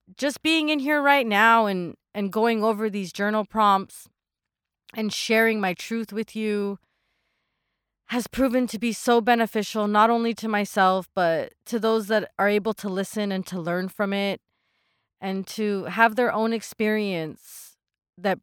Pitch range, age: 200-240 Hz, 30-49